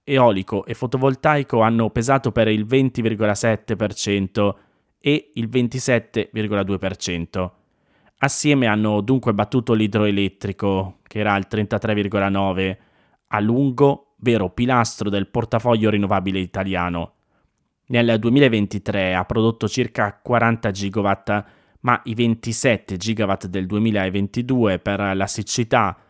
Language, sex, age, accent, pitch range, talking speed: Italian, male, 20-39, native, 100-120 Hz, 100 wpm